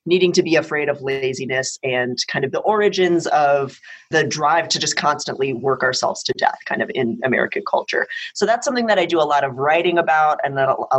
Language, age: English, 30-49